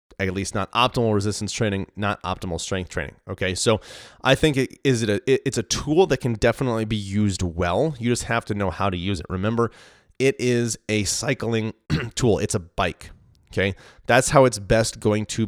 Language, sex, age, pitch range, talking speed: English, male, 30-49, 100-120 Hz, 205 wpm